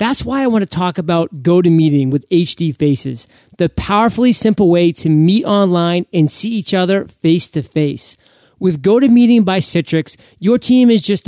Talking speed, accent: 165 wpm, American